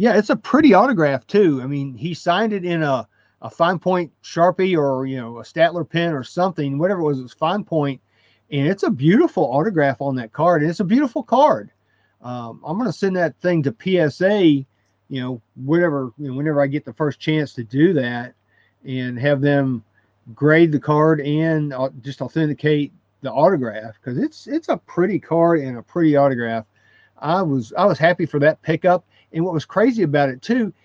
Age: 40-59